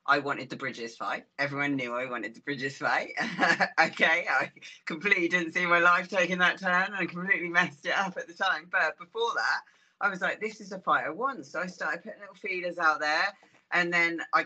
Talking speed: 225 wpm